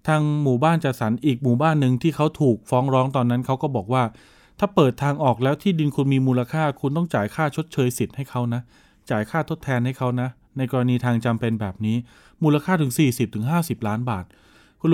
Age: 20-39